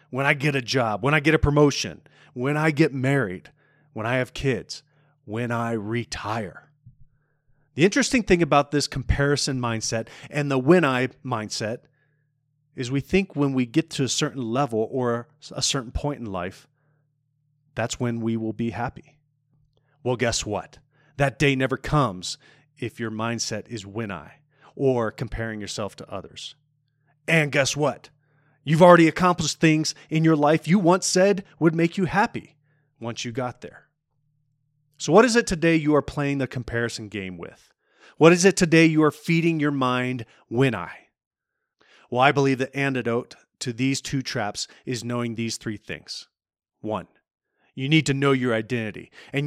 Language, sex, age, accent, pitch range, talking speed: English, male, 30-49, American, 120-150 Hz, 170 wpm